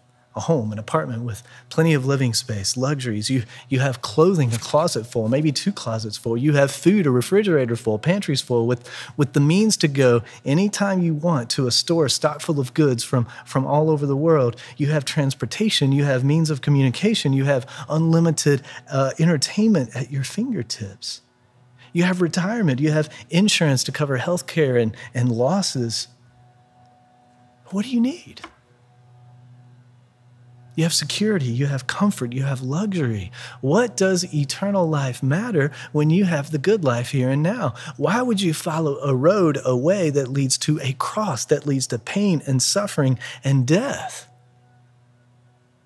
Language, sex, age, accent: English, male, 40-59, American